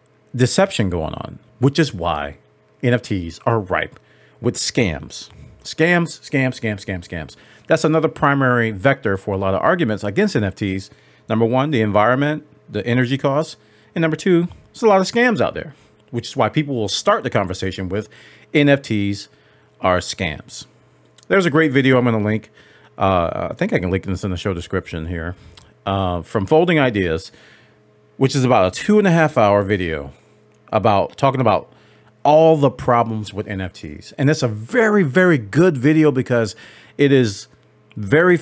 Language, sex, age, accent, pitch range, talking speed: English, male, 40-59, American, 100-140 Hz, 170 wpm